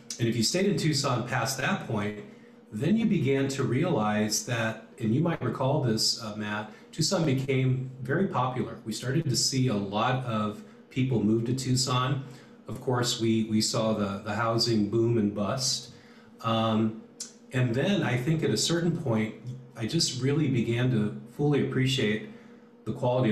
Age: 40-59